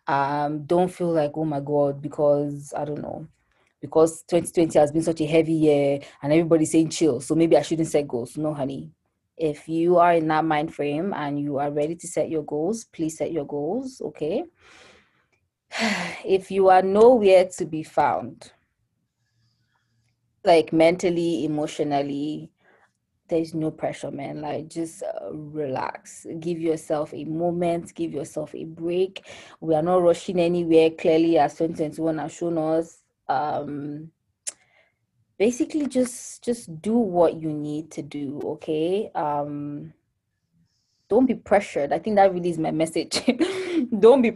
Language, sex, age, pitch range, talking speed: English, female, 20-39, 145-175 Hz, 150 wpm